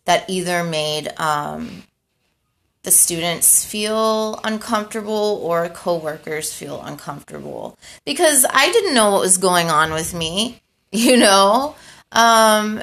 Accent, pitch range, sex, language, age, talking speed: American, 170-220 Hz, female, English, 30-49, 115 wpm